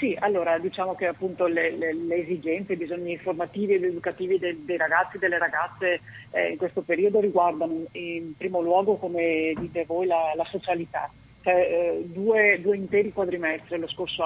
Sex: female